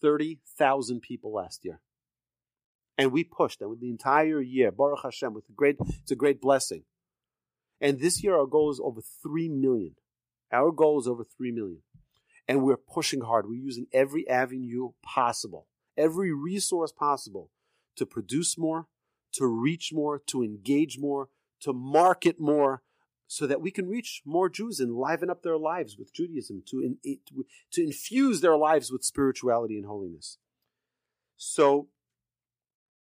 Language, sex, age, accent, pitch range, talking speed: English, male, 40-59, American, 125-165 Hz, 150 wpm